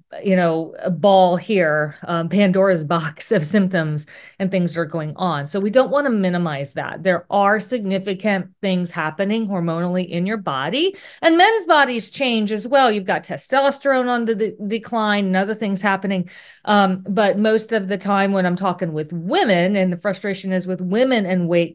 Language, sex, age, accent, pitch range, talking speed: English, female, 40-59, American, 185-225 Hz, 180 wpm